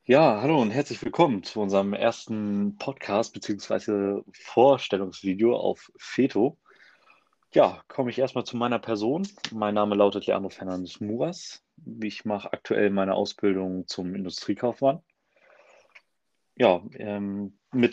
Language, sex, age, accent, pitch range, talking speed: German, male, 30-49, German, 100-120 Hz, 115 wpm